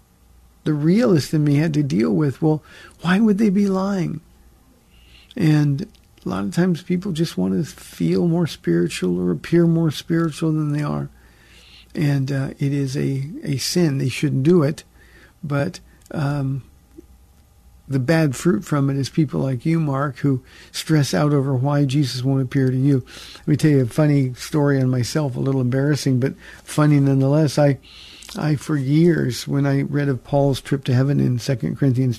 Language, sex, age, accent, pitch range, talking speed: English, male, 50-69, American, 135-165 Hz, 180 wpm